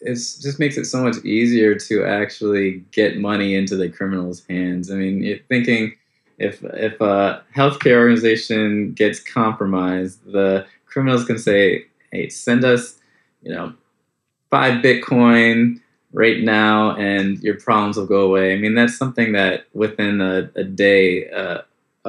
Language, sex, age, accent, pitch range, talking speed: English, male, 20-39, American, 90-110 Hz, 150 wpm